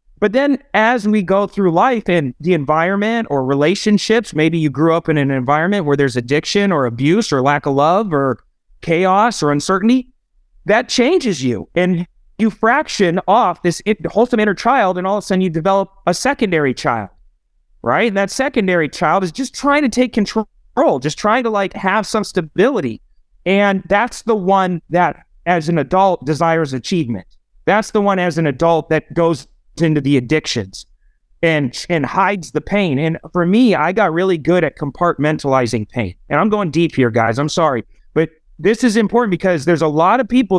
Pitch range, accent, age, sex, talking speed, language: 150-205 Hz, American, 30-49, male, 185 wpm, English